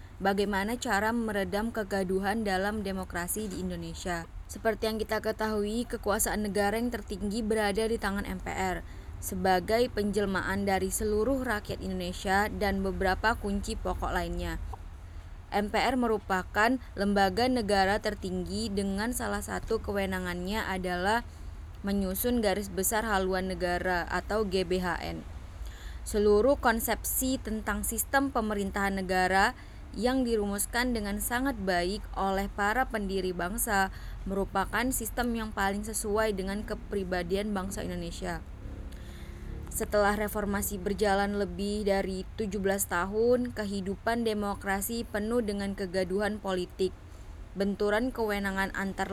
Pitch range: 185-215 Hz